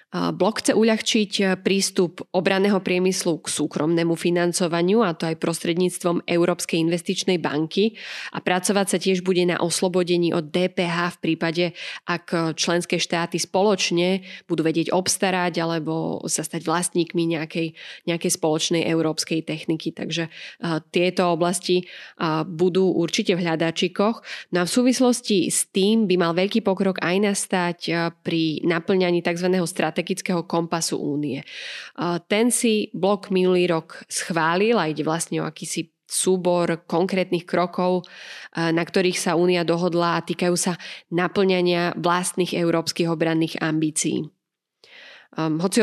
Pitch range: 165-185 Hz